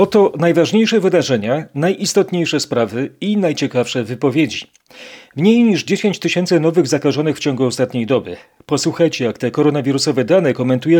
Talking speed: 130 wpm